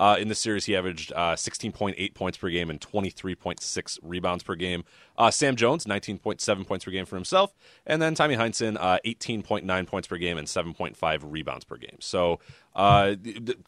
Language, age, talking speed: English, 30-49, 190 wpm